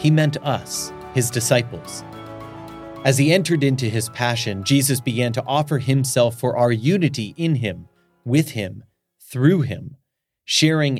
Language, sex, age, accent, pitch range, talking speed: English, male, 30-49, American, 115-140 Hz, 140 wpm